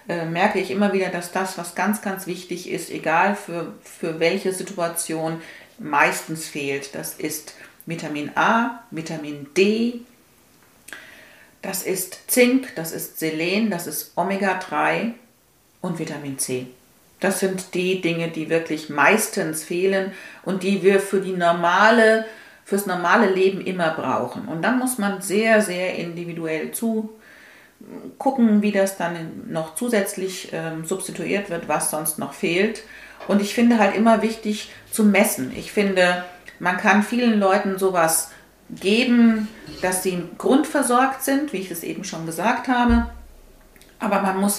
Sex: female